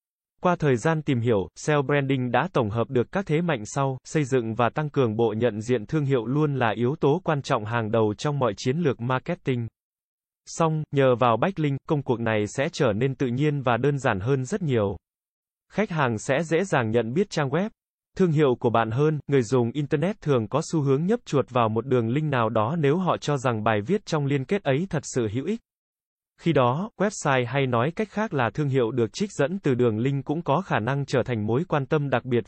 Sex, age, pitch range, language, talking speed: male, 20-39, 120-155 Hz, Vietnamese, 235 wpm